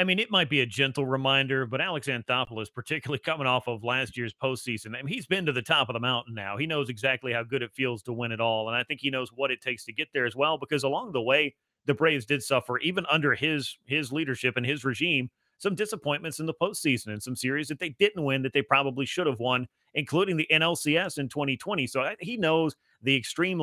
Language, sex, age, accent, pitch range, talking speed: English, male, 30-49, American, 125-155 Hz, 240 wpm